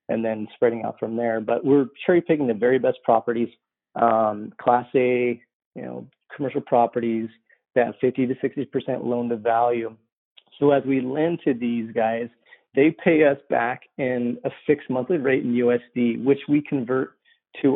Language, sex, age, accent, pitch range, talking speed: English, male, 30-49, American, 120-140 Hz, 170 wpm